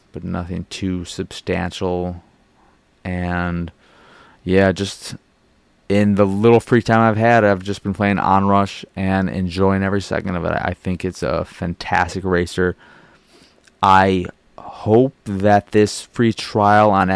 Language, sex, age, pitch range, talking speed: English, male, 20-39, 90-105 Hz, 135 wpm